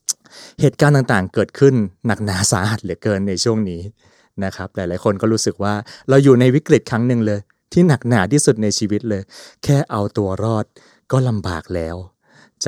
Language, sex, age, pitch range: Thai, male, 20-39, 100-130 Hz